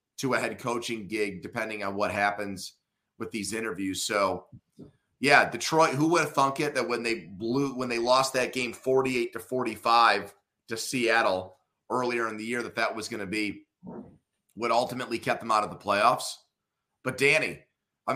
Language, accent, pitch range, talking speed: English, American, 115-150 Hz, 180 wpm